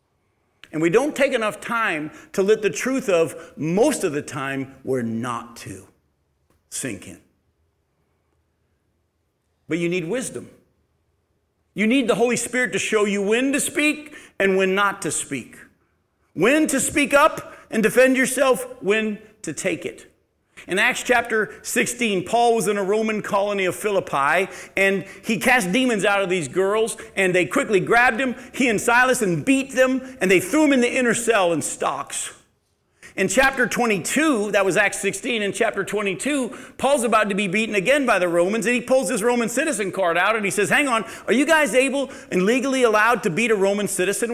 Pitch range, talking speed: 170-245 Hz, 185 wpm